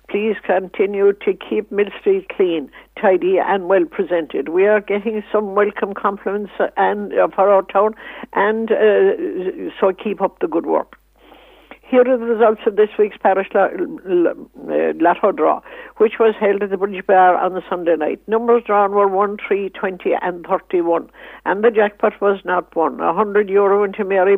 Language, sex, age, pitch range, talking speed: English, female, 60-79, 190-220 Hz, 180 wpm